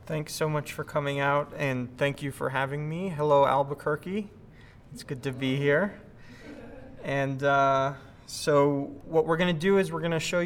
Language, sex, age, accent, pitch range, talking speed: English, male, 30-49, American, 125-145 Hz, 185 wpm